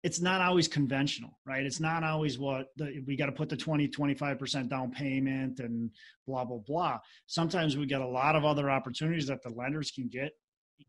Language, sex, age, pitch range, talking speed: English, male, 30-49, 130-155 Hz, 185 wpm